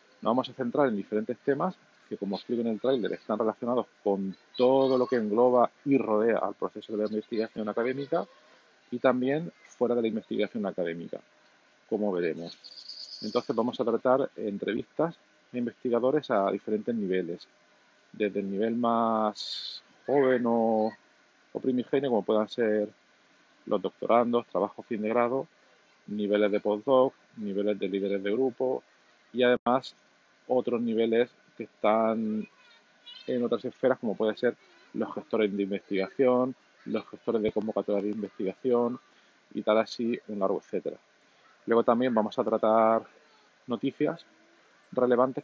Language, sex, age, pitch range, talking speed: Spanish, male, 40-59, 105-125 Hz, 140 wpm